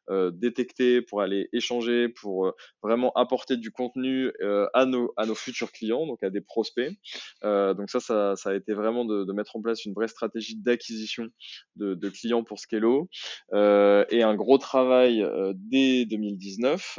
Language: French